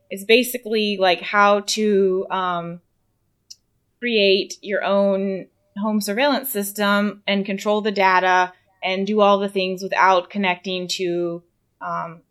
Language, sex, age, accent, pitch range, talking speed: English, female, 20-39, American, 175-200 Hz, 120 wpm